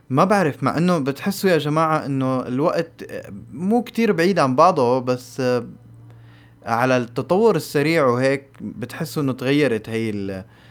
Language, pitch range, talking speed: Arabic, 110-130 Hz, 130 wpm